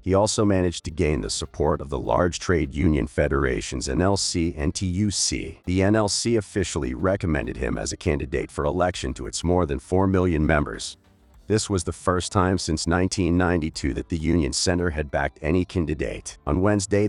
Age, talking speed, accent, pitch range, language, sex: 40-59, 170 wpm, American, 80-100 Hz, English, male